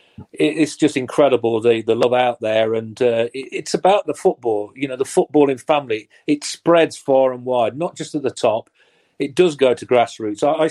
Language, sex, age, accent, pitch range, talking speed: English, male, 40-59, British, 115-135 Hz, 195 wpm